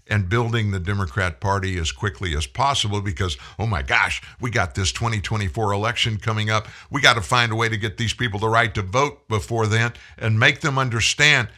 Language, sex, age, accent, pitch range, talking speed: English, male, 60-79, American, 75-115 Hz, 205 wpm